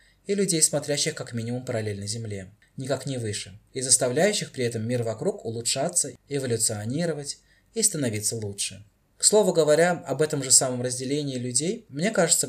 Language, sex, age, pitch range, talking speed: Russian, male, 20-39, 110-150 Hz, 155 wpm